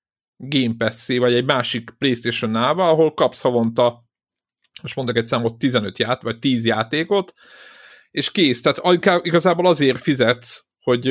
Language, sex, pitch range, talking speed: Hungarian, male, 120-155 Hz, 135 wpm